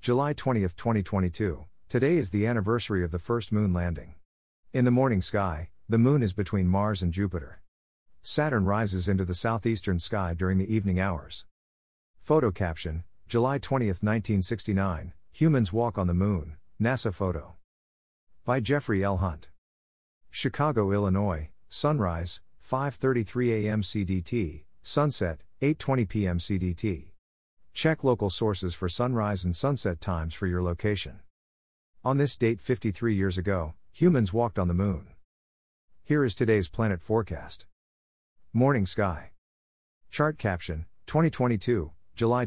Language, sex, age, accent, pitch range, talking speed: English, male, 50-69, American, 85-115 Hz, 130 wpm